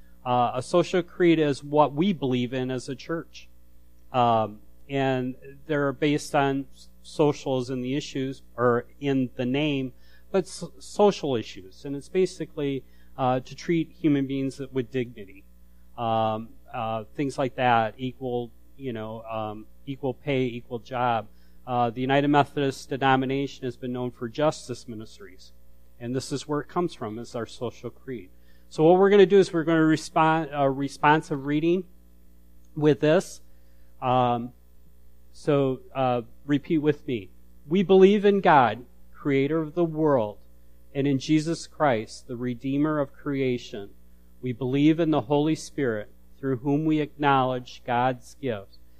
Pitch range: 110-145 Hz